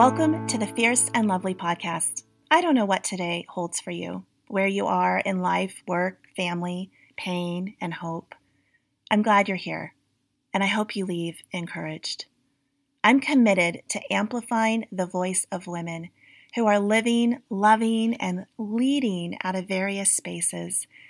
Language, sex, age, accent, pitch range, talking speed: English, female, 30-49, American, 180-230 Hz, 150 wpm